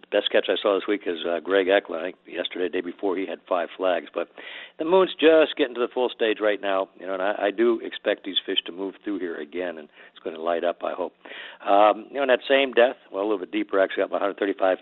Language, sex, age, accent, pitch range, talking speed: English, male, 60-79, American, 95-120 Hz, 275 wpm